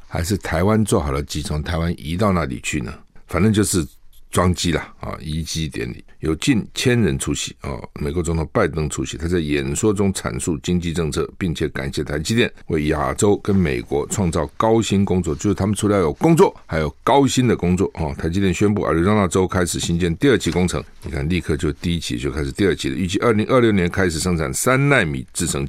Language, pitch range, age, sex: Chinese, 80-100 Hz, 50-69, male